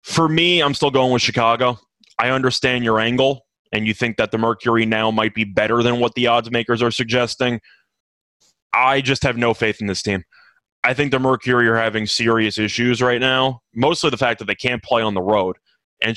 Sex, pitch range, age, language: male, 110-130 Hz, 20-39, English